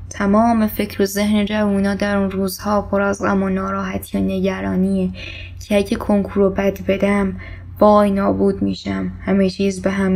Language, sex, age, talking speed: Persian, female, 10-29, 160 wpm